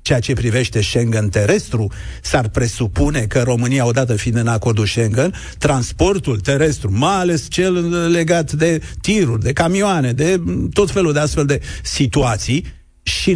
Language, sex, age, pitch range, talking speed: Romanian, male, 50-69, 125-175 Hz, 145 wpm